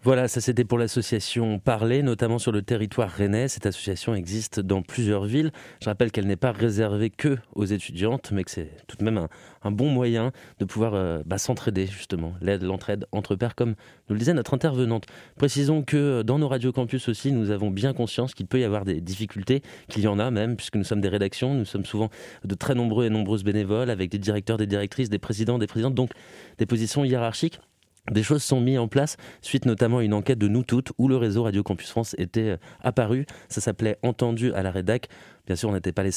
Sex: male